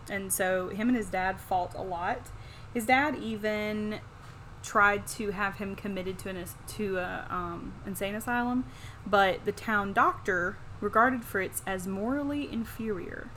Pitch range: 170-205 Hz